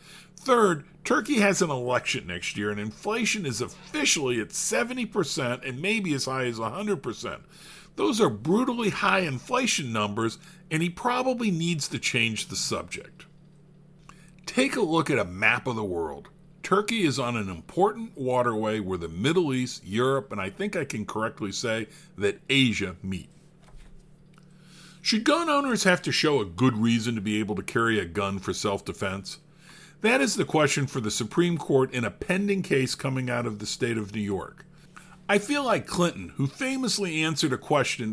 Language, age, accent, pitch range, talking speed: English, 50-69, American, 125-180 Hz, 175 wpm